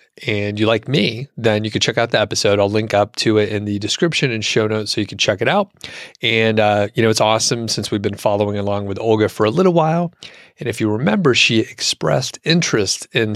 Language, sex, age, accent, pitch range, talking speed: English, male, 30-49, American, 105-120 Hz, 240 wpm